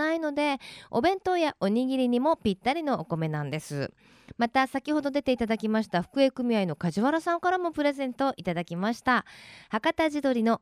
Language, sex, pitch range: Japanese, female, 190-295 Hz